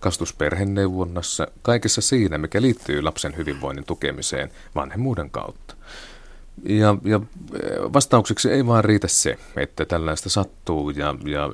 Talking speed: 115 wpm